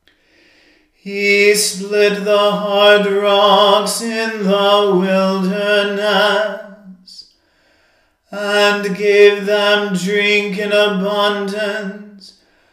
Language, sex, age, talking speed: English, male, 40-59, 65 wpm